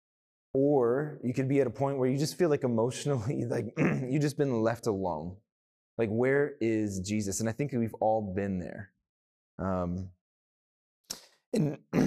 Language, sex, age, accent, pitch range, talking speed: English, male, 20-39, American, 85-110 Hz, 160 wpm